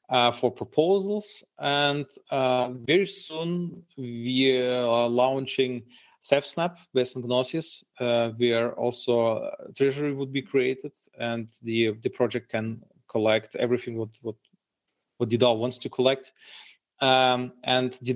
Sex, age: male, 40-59